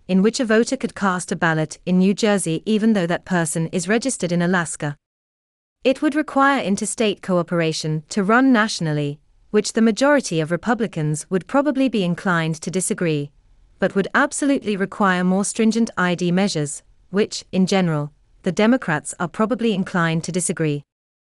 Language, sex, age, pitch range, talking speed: English, female, 30-49, 160-225 Hz, 160 wpm